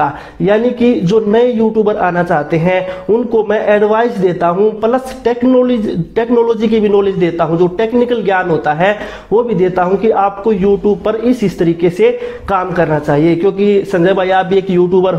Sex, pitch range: male, 180-215 Hz